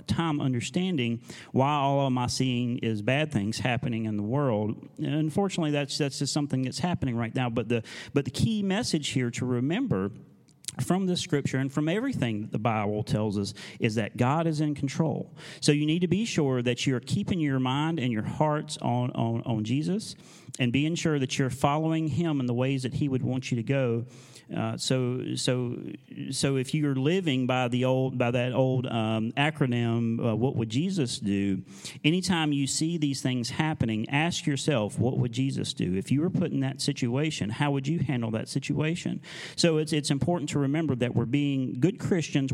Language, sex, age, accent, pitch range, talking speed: English, male, 40-59, American, 120-155 Hz, 200 wpm